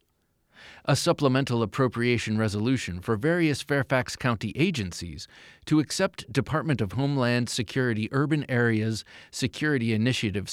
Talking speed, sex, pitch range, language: 110 wpm, male, 110-145 Hz, English